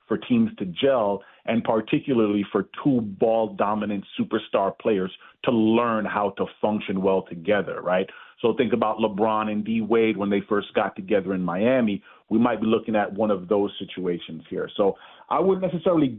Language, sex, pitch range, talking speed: English, male, 110-145 Hz, 175 wpm